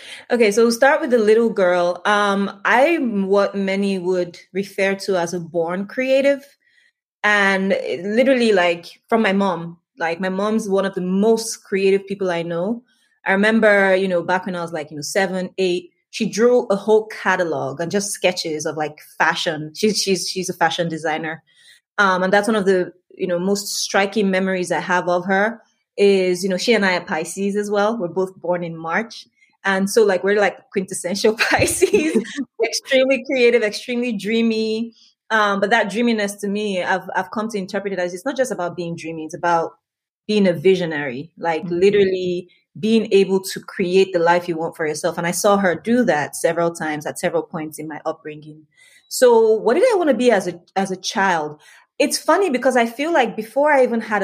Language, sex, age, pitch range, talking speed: English, female, 20-39, 175-220 Hz, 200 wpm